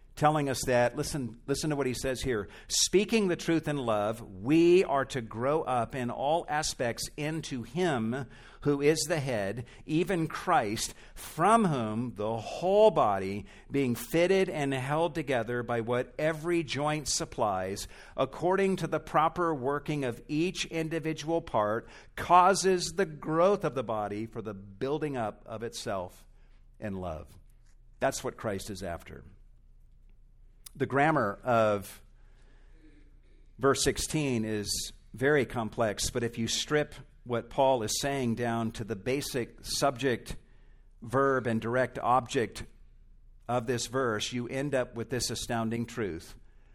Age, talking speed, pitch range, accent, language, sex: 50-69, 140 wpm, 110-150 Hz, American, English, male